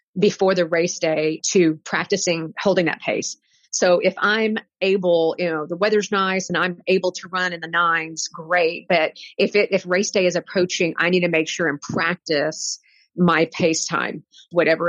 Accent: American